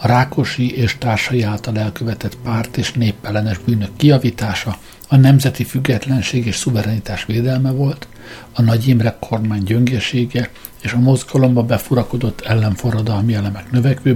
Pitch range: 110-130 Hz